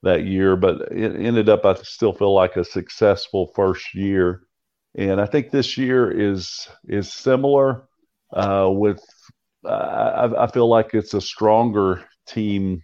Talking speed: 155 wpm